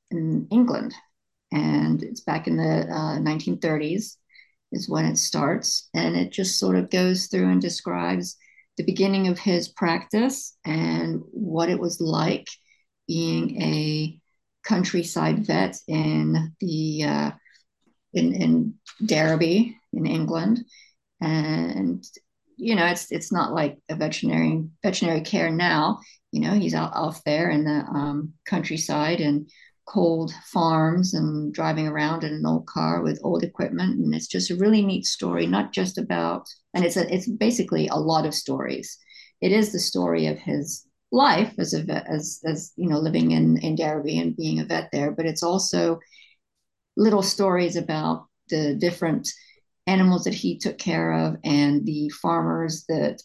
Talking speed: 155 wpm